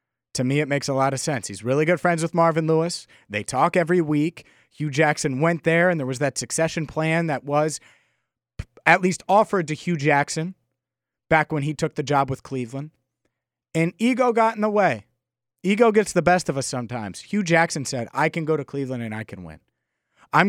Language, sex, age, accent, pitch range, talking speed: English, male, 30-49, American, 130-175 Hz, 210 wpm